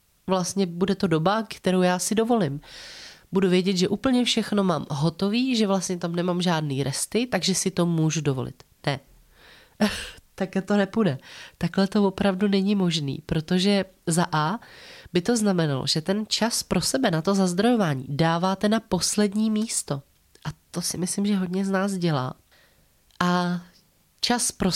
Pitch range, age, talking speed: 160-195 Hz, 30-49, 160 wpm